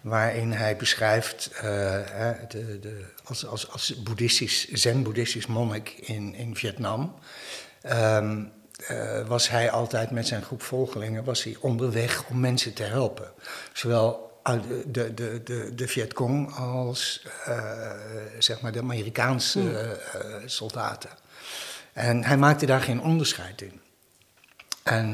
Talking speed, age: 105 wpm, 60-79